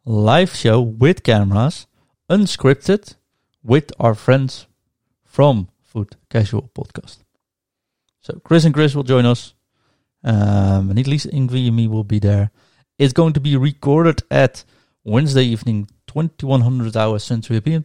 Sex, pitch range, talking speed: male, 105-130 Hz, 135 wpm